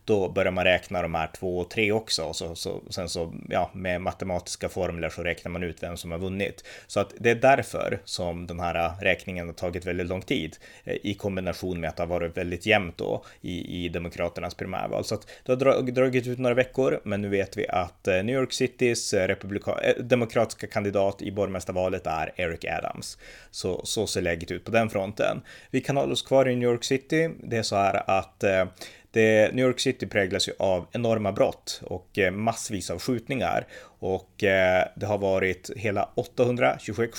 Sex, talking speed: male, 190 wpm